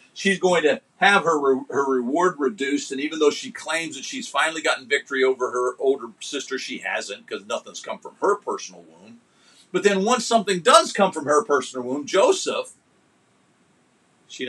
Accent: American